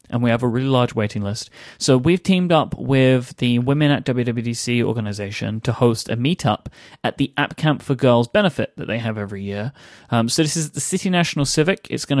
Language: English